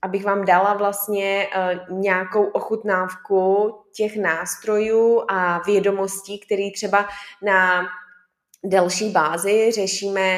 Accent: native